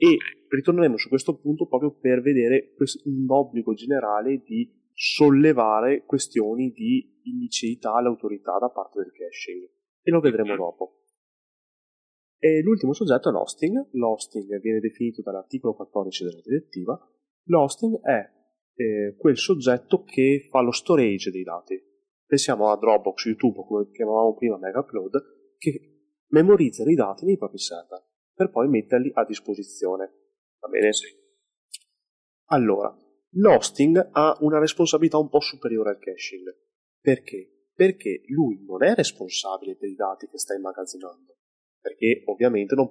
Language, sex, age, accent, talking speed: Italian, male, 30-49, native, 135 wpm